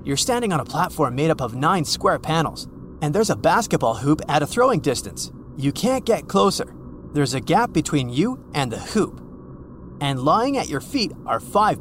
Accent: American